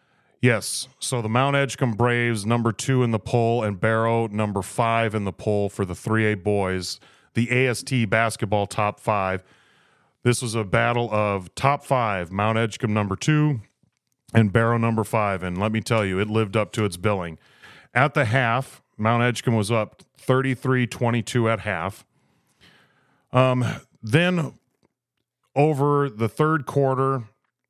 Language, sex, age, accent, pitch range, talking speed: English, male, 30-49, American, 105-130 Hz, 150 wpm